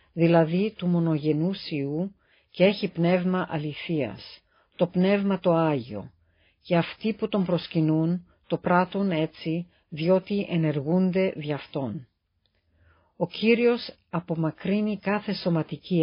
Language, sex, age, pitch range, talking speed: Greek, female, 50-69, 155-185 Hz, 110 wpm